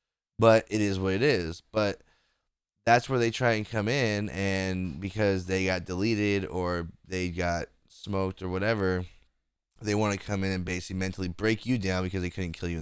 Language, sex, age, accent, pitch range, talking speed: English, male, 20-39, American, 90-110 Hz, 190 wpm